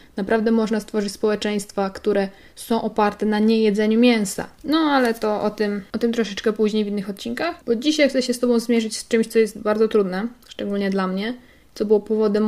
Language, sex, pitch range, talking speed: Polish, female, 210-250 Hz, 195 wpm